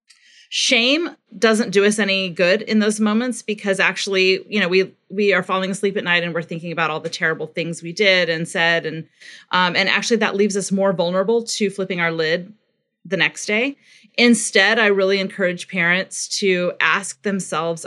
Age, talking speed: 30-49, 190 wpm